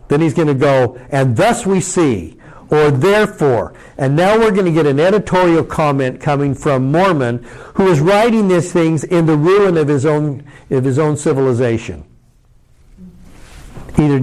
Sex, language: male, English